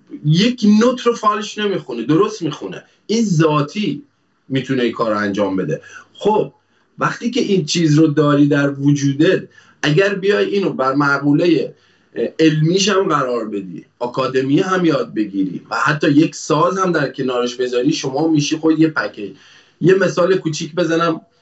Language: Persian